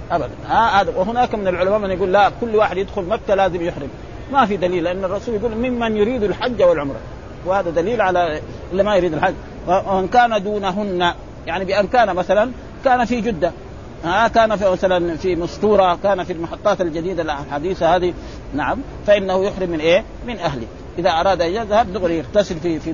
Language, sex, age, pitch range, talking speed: Arabic, male, 50-69, 175-210 Hz, 180 wpm